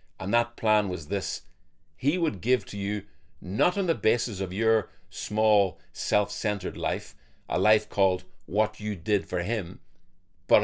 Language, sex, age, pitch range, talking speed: English, male, 50-69, 95-115 Hz, 160 wpm